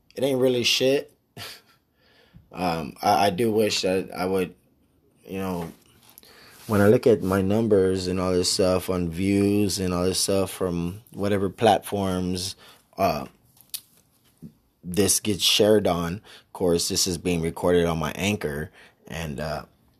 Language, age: English, 20-39